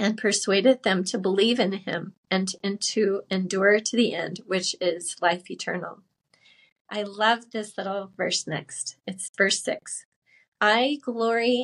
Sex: female